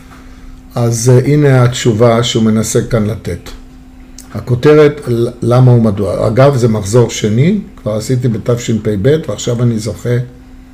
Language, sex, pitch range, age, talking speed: Hebrew, male, 95-130 Hz, 50-69, 110 wpm